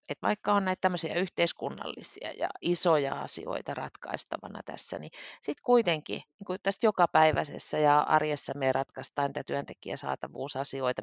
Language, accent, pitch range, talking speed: Finnish, native, 140-195 Hz, 130 wpm